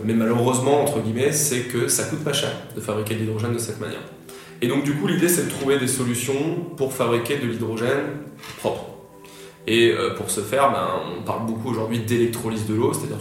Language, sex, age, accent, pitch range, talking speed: French, male, 20-39, French, 110-125 Hz, 205 wpm